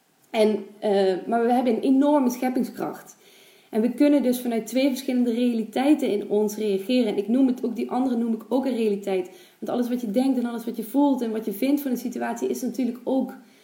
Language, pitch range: Dutch, 205-250 Hz